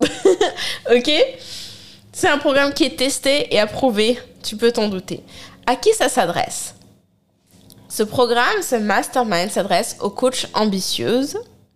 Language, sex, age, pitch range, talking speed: French, female, 20-39, 175-255 Hz, 130 wpm